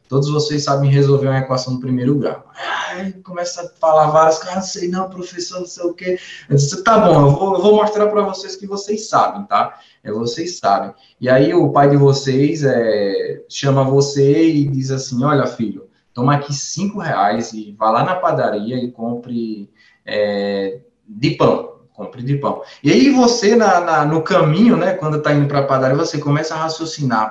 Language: Portuguese